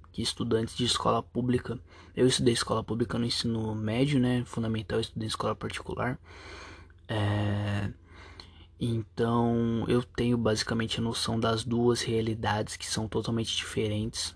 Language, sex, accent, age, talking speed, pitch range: Portuguese, male, Brazilian, 20-39, 130 wpm, 105-120 Hz